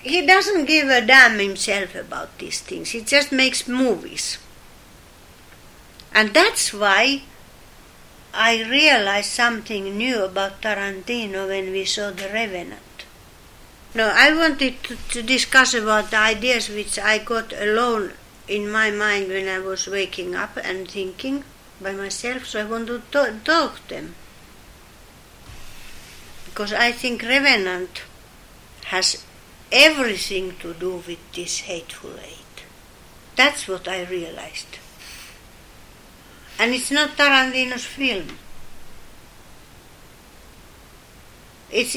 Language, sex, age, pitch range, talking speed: English, female, 60-79, 200-260 Hz, 115 wpm